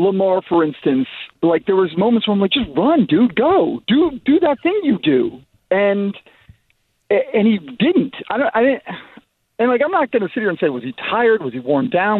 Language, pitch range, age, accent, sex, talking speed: English, 155-205 Hz, 40-59, American, male, 220 wpm